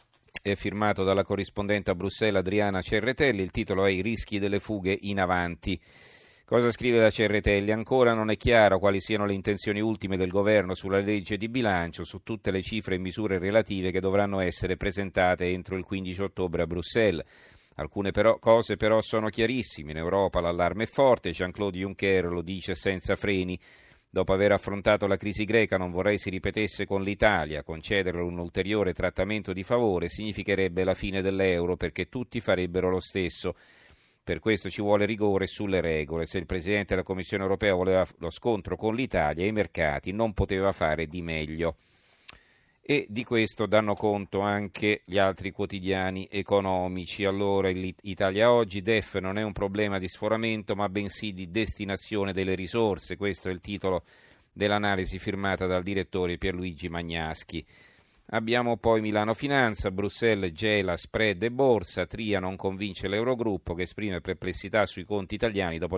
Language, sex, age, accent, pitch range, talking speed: Italian, male, 40-59, native, 95-105 Hz, 160 wpm